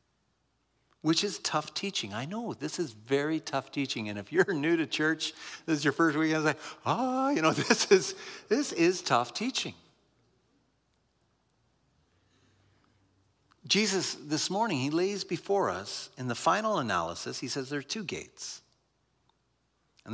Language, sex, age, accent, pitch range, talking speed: English, male, 50-69, American, 120-180 Hz, 155 wpm